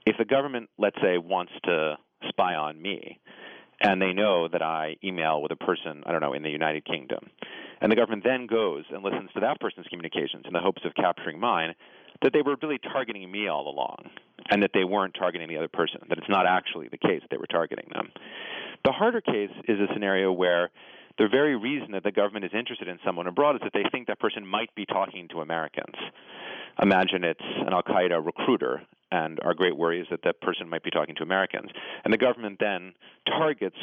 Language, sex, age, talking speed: English, male, 40-59, 215 wpm